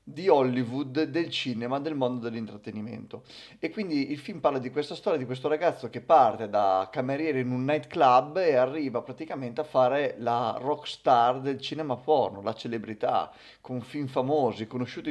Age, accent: 30-49, native